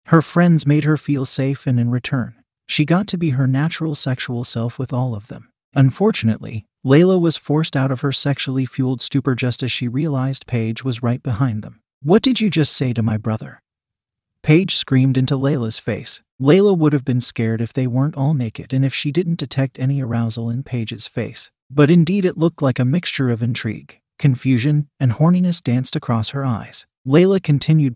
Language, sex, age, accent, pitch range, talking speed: English, male, 30-49, American, 120-150 Hz, 195 wpm